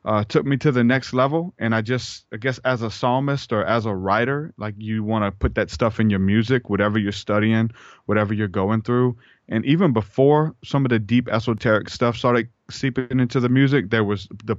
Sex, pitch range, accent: male, 105-120 Hz, American